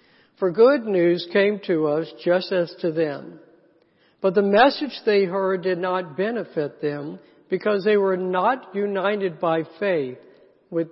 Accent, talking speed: American, 150 wpm